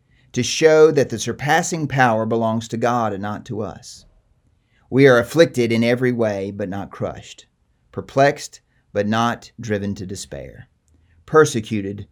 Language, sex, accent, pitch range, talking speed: English, male, American, 105-130 Hz, 145 wpm